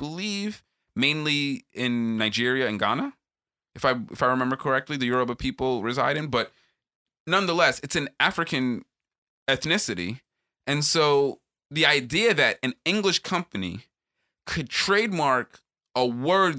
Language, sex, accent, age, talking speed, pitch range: English, male, American, 30-49, 125 wpm, 125-170 Hz